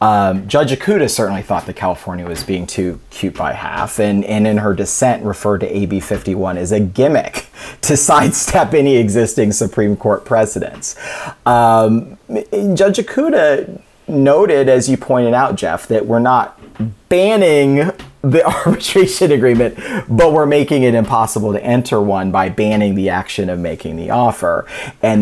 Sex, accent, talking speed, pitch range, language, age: male, American, 155 wpm, 100-140 Hz, English, 30-49